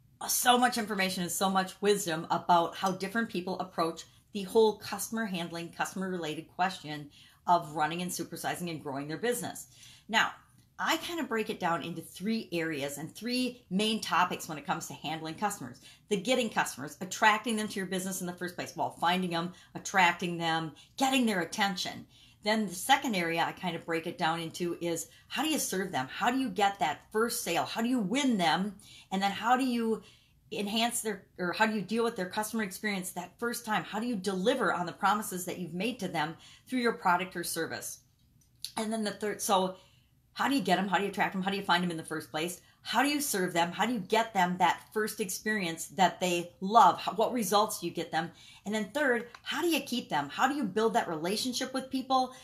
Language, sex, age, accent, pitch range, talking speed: English, female, 40-59, American, 170-220 Hz, 220 wpm